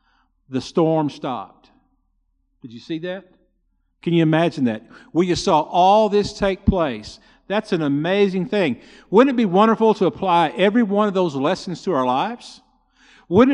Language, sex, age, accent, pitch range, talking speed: English, male, 50-69, American, 170-230 Hz, 170 wpm